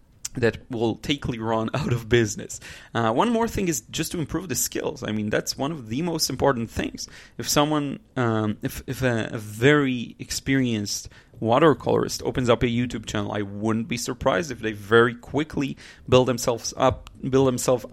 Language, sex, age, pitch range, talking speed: English, male, 30-49, 110-140 Hz, 180 wpm